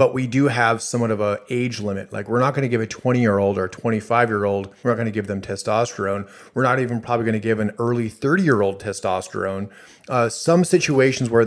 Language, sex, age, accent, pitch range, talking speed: English, male, 30-49, American, 105-125 Hz, 215 wpm